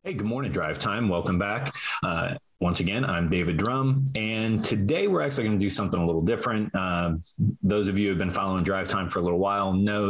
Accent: American